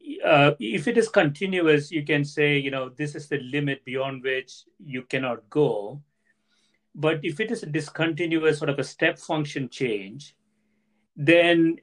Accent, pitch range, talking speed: Indian, 130-160 Hz, 160 wpm